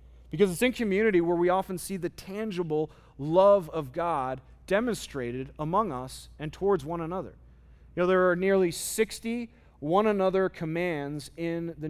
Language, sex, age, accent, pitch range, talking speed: English, male, 30-49, American, 140-200 Hz, 155 wpm